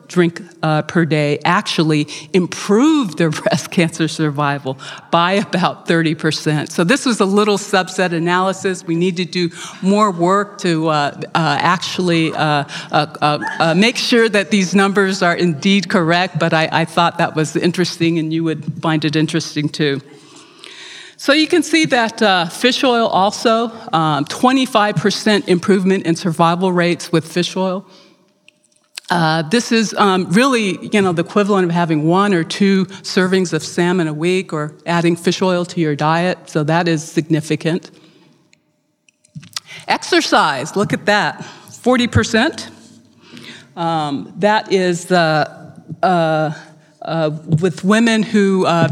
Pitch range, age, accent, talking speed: 160-200 Hz, 40-59, American, 145 wpm